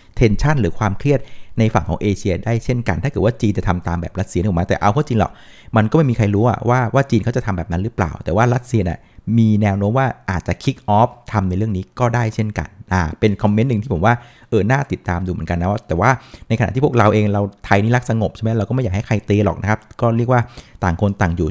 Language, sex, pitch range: Thai, male, 95-125 Hz